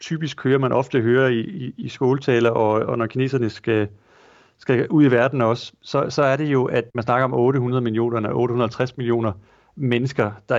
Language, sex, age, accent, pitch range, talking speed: Danish, male, 30-49, native, 110-130 Hz, 200 wpm